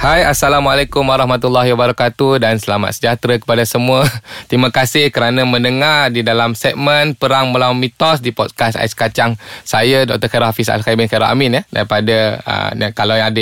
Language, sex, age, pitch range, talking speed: Malay, male, 20-39, 115-135 Hz, 160 wpm